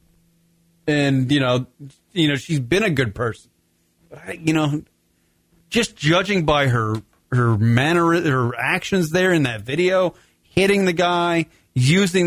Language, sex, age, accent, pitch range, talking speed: English, male, 30-49, American, 110-165 Hz, 135 wpm